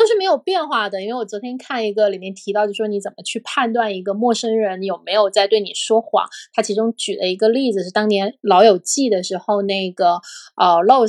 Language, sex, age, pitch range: Chinese, female, 20-39, 195-230 Hz